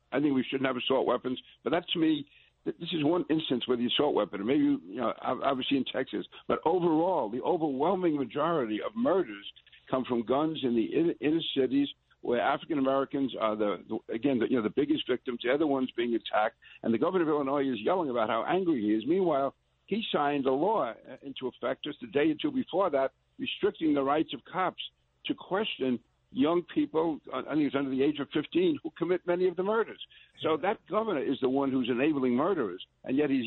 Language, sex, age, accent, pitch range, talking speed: English, male, 60-79, American, 130-165 Hz, 205 wpm